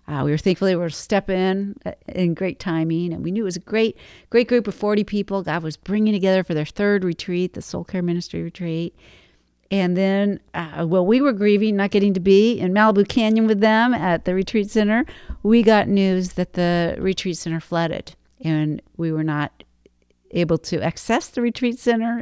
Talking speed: 205 wpm